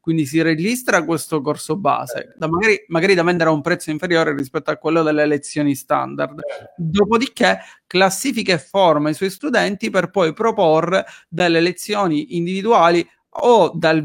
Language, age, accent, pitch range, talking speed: Italian, 40-59, native, 155-195 Hz, 150 wpm